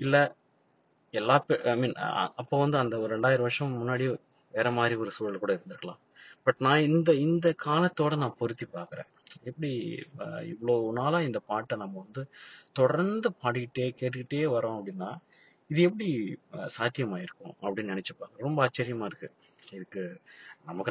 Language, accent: Tamil, native